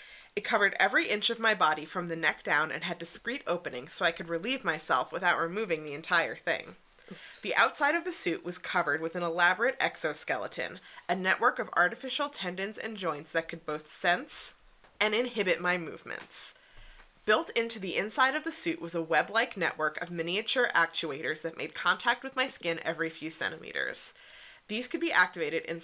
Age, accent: 20-39, American